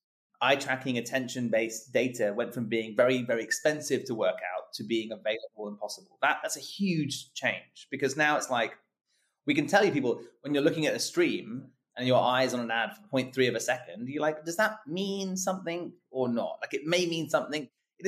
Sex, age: male, 30-49